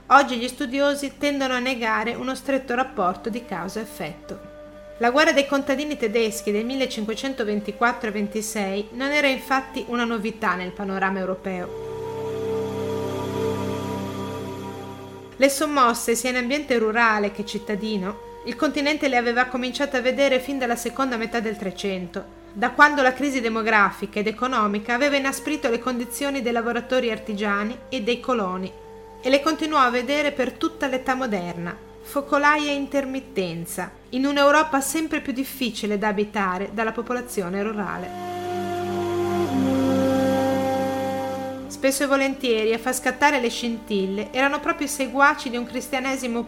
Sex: female